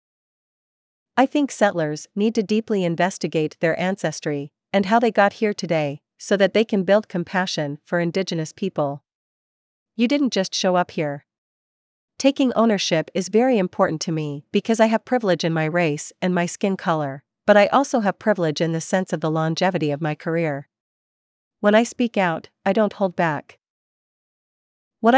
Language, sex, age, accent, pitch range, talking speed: English, female, 40-59, American, 160-205 Hz, 170 wpm